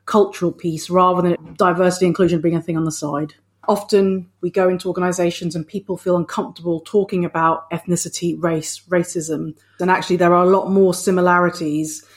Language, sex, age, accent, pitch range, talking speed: English, female, 30-49, British, 170-200 Hz, 170 wpm